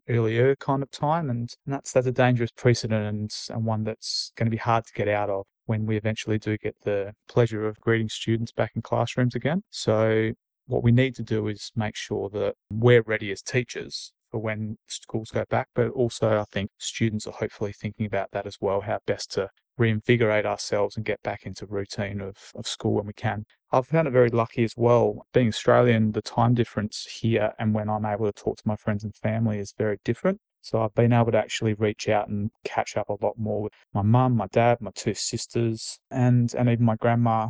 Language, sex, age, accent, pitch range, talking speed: English, male, 20-39, Australian, 110-120 Hz, 220 wpm